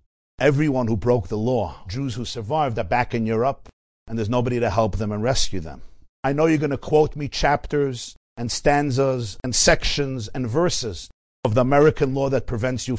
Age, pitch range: 50-69, 100-135 Hz